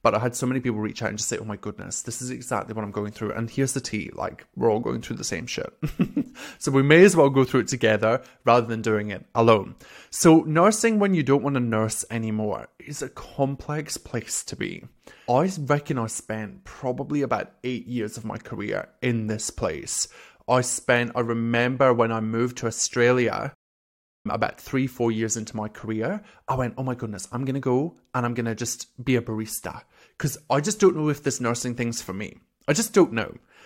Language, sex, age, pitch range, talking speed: English, male, 20-39, 110-140 Hz, 220 wpm